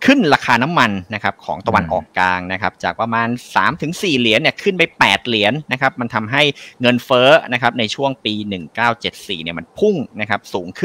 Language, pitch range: Thai, 100-140 Hz